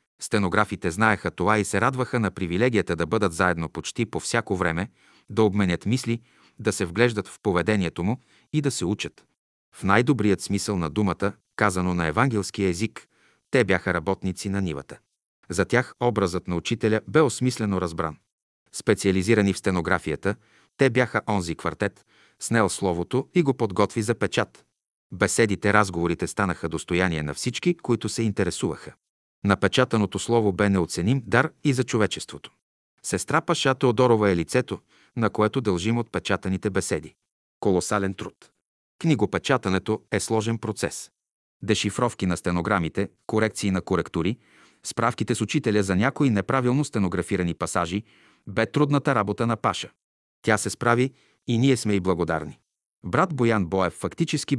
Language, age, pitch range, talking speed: Bulgarian, 40-59, 95-115 Hz, 140 wpm